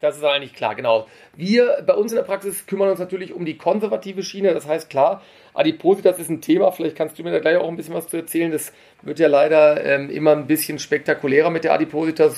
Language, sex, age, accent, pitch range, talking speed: German, male, 40-59, German, 140-170 Hz, 235 wpm